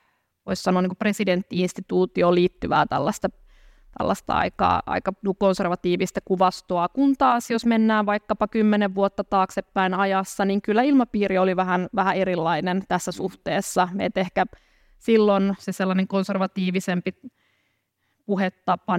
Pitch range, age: 180-200 Hz, 20-39